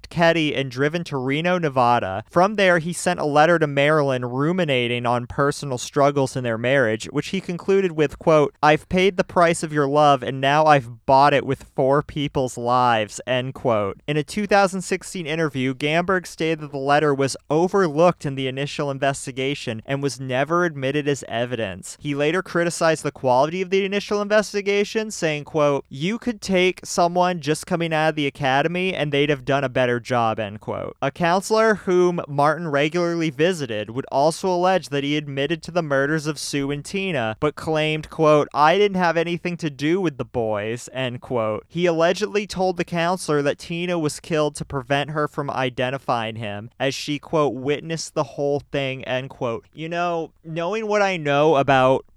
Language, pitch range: English, 135-175 Hz